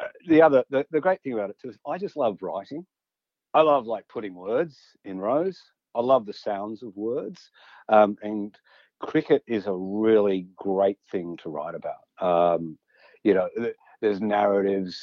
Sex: male